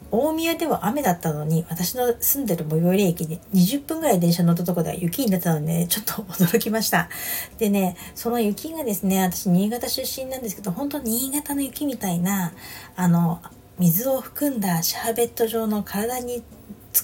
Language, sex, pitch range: Japanese, female, 175-235 Hz